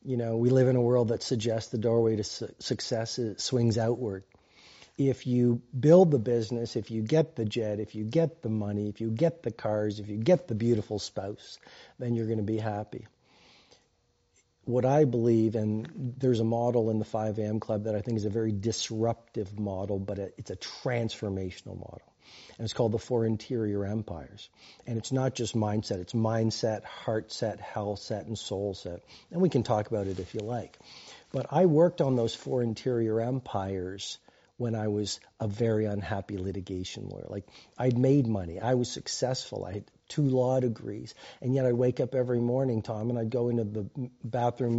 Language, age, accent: Hindi, 40-59, American